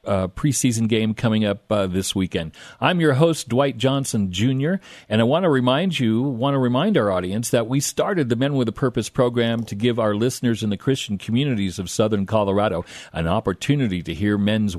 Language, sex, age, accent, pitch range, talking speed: English, male, 50-69, American, 105-140 Hz, 205 wpm